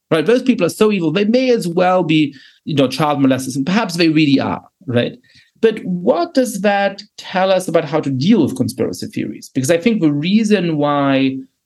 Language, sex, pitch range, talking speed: English, male, 130-180 Hz, 205 wpm